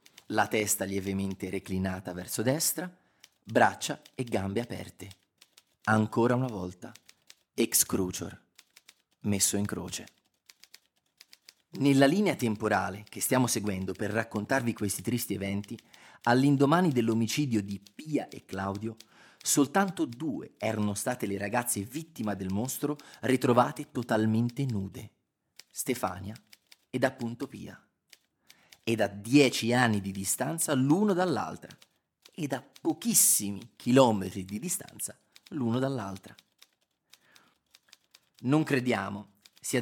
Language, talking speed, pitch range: Italian, 105 wpm, 100-130 Hz